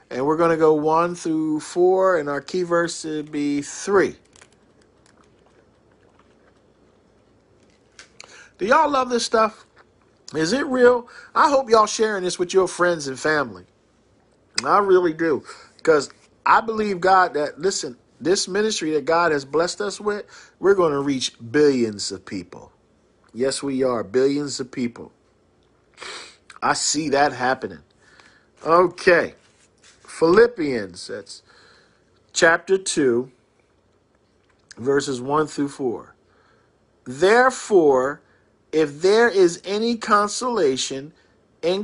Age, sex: 50-69, male